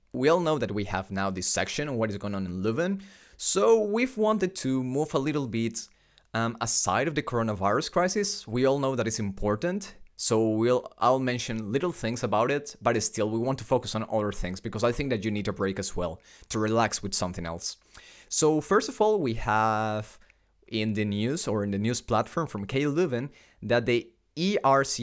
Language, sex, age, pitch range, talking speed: English, male, 20-39, 105-140 Hz, 210 wpm